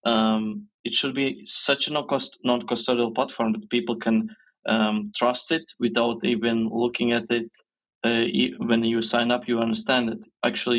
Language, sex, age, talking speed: Spanish, male, 20-39, 165 wpm